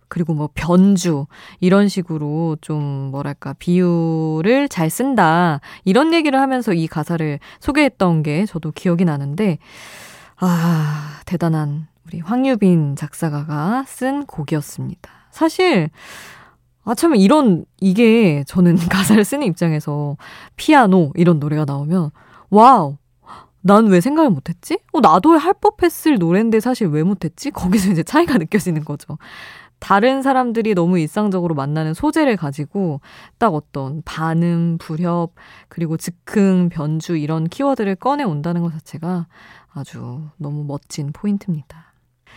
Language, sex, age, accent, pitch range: Korean, female, 20-39, native, 155-215 Hz